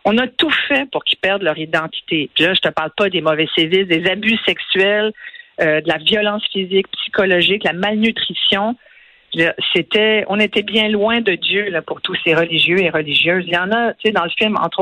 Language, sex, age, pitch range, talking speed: French, female, 50-69, 165-210 Hz, 225 wpm